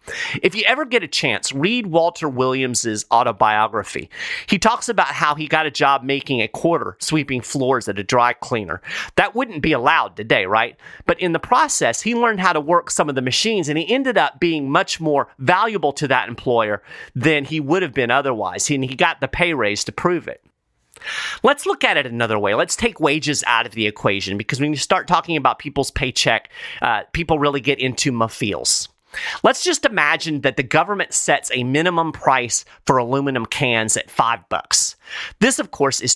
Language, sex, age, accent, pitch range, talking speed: English, male, 30-49, American, 130-180 Hz, 200 wpm